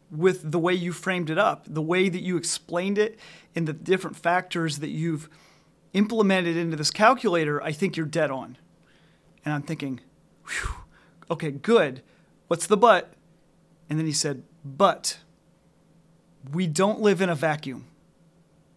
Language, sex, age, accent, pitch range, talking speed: English, male, 30-49, American, 160-190 Hz, 150 wpm